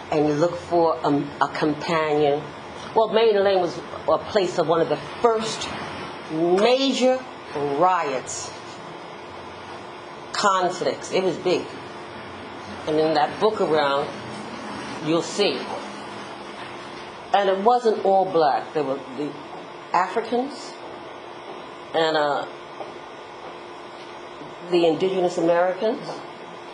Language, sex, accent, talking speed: English, female, American, 105 wpm